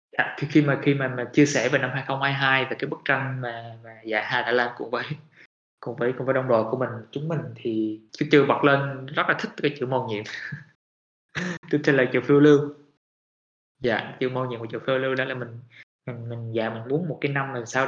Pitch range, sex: 115-145 Hz, male